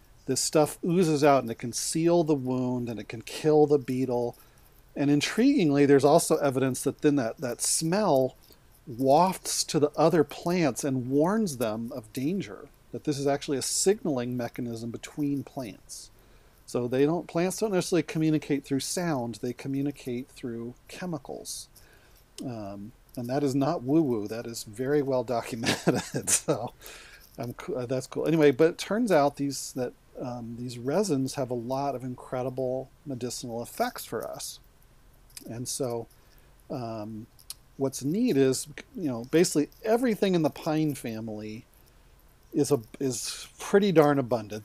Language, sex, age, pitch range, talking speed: English, male, 40-59, 120-150 Hz, 150 wpm